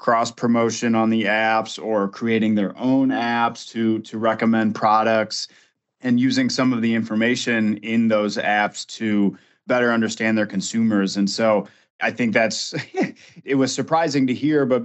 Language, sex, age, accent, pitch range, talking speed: English, male, 30-49, American, 105-120 Hz, 160 wpm